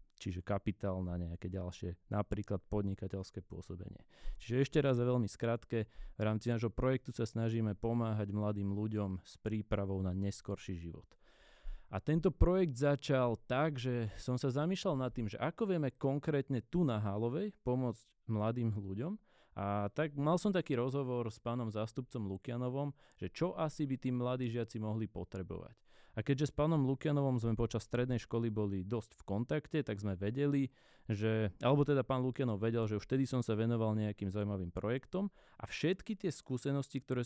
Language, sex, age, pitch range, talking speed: Slovak, male, 20-39, 105-135 Hz, 165 wpm